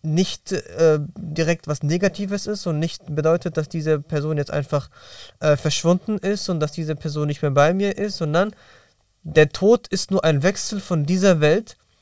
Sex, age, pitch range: male, 20-39, 145-180 Hz